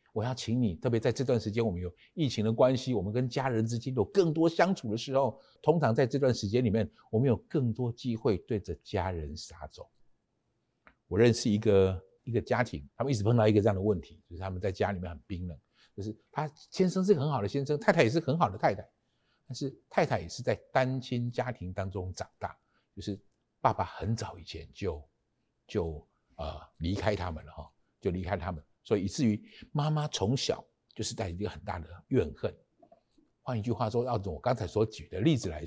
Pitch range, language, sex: 100-130 Hz, Chinese, male